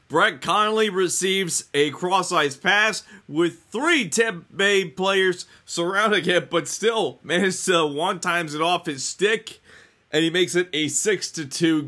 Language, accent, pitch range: English, American, 145-195 Hz